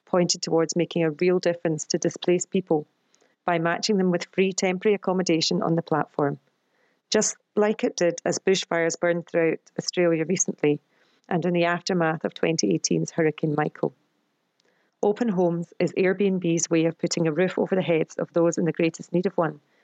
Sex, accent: female, British